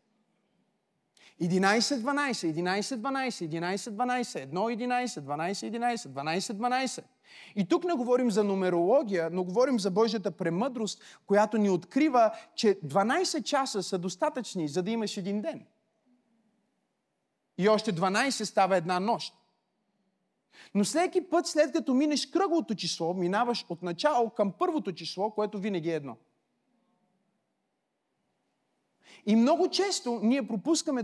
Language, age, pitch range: Bulgarian, 30-49, 185-245 Hz